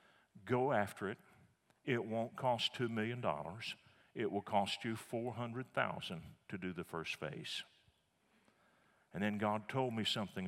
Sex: male